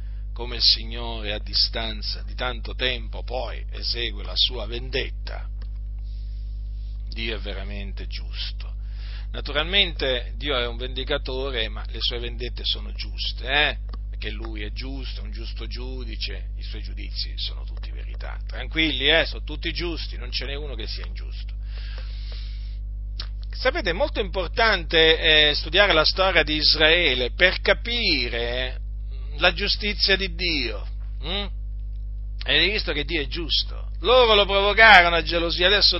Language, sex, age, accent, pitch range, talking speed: Italian, male, 40-59, native, 100-135 Hz, 135 wpm